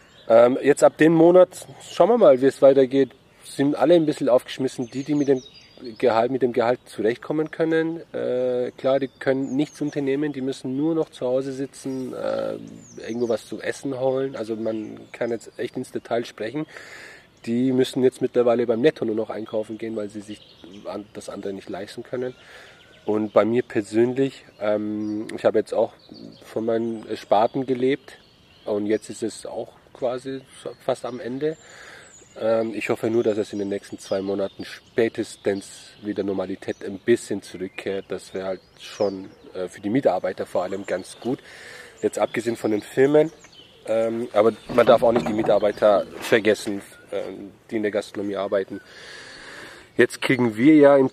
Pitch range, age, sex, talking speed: 105-135 Hz, 30-49, male, 170 wpm